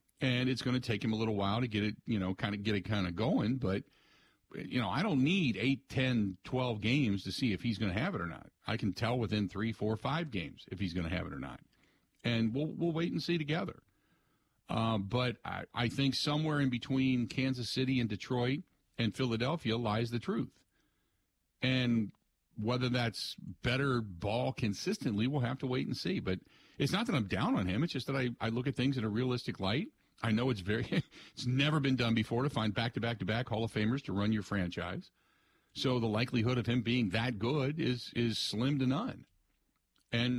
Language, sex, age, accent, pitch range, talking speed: English, male, 50-69, American, 105-135 Hz, 225 wpm